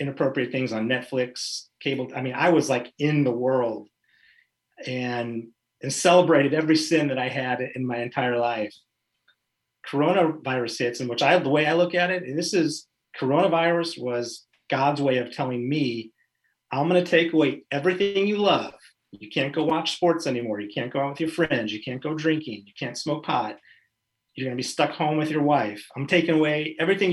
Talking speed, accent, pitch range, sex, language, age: 195 wpm, American, 120-155 Hz, male, English, 40-59